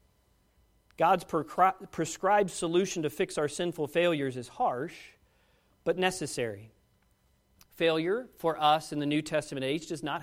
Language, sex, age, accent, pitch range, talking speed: English, male, 40-59, American, 175-290 Hz, 130 wpm